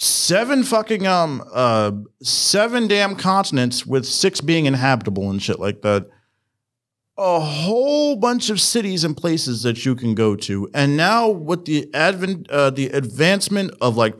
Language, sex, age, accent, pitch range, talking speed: English, male, 40-59, American, 125-190 Hz, 155 wpm